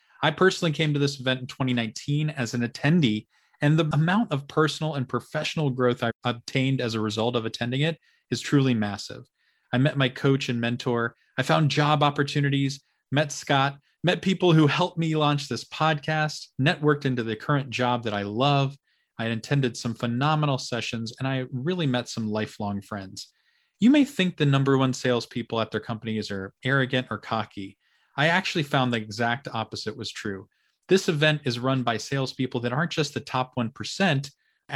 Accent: American